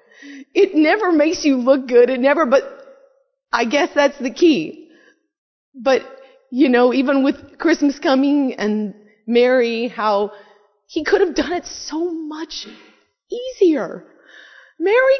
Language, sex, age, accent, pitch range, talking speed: English, female, 30-49, American, 260-370 Hz, 130 wpm